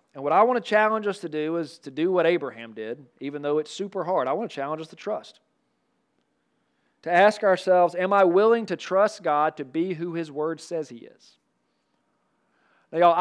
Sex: male